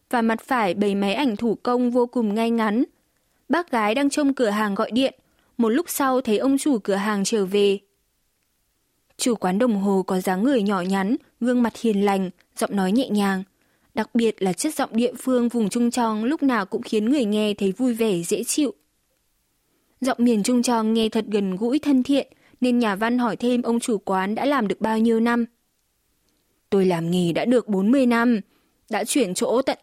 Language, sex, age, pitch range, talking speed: Vietnamese, female, 20-39, 205-255 Hz, 205 wpm